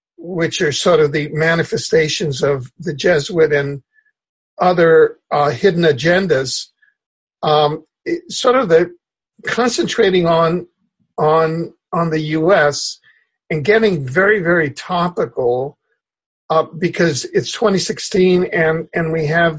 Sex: male